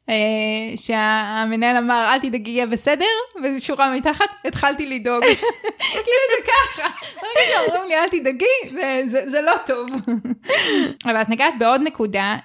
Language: Hebrew